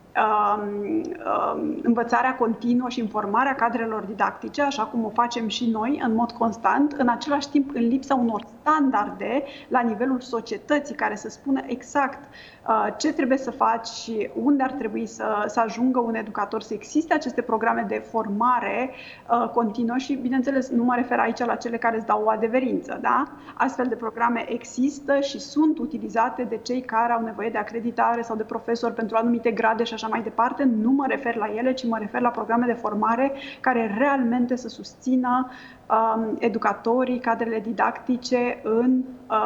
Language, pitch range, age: Romanian, 225-260 Hz, 30-49